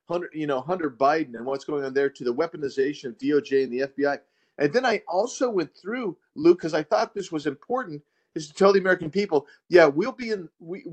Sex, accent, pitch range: male, American, 145-220 Hz